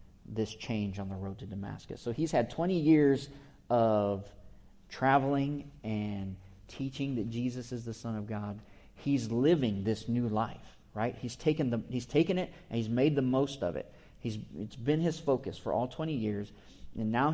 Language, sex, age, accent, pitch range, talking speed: English, male, 40-59, American, 105-140 Hz, 185 wpm